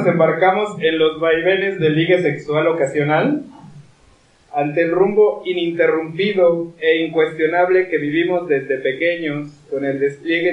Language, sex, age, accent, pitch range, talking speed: Spanish, male, 30-49, Mexican, 145-185 Hz, 125 wpm